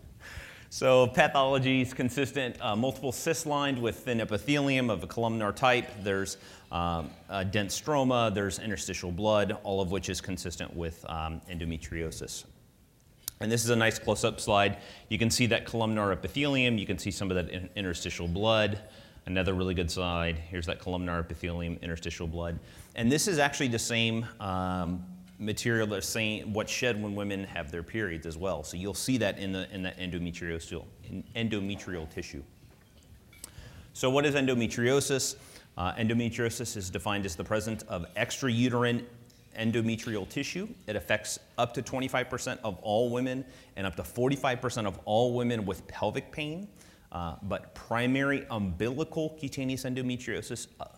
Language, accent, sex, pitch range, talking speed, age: English, American, male, 95-125 Hz, 155 wpm, 30-49